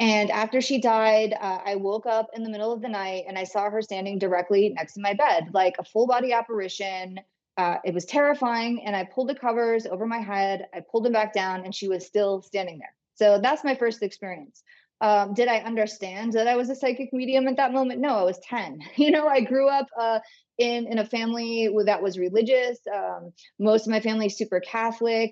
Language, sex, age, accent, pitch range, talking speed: English, female, 30-49, American, 195-235 Hz, 225 wpm